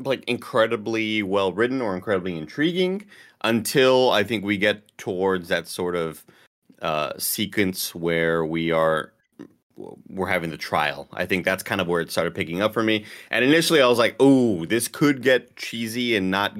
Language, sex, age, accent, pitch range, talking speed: English, male, 30-49, American, 85-105 Hz, 175 wpm